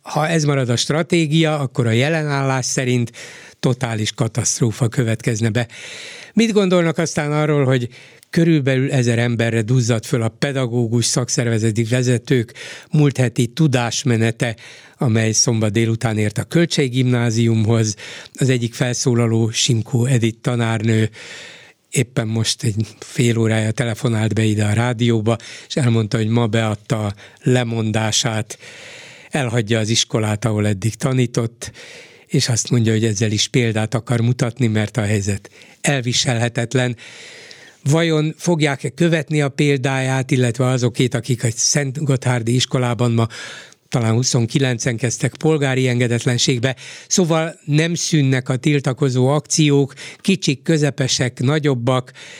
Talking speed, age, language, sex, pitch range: 120 wpm, 60-79, Hungarian, male, 115-150 Hz